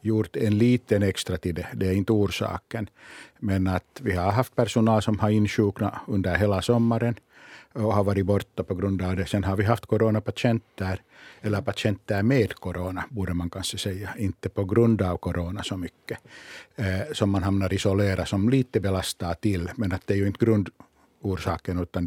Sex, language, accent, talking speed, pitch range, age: male, Danish, Finnish, 180 wpm, 95-110 Hz, 60-79